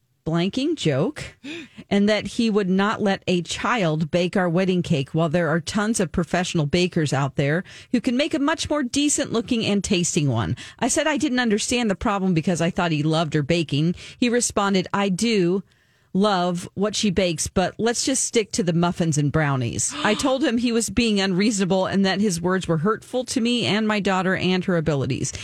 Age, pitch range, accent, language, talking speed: 40-59, 165-220 Hz, American, English, 205 wpm